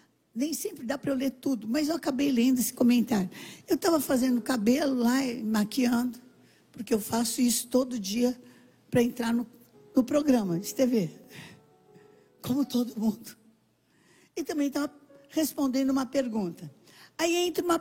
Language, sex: Portuguese, female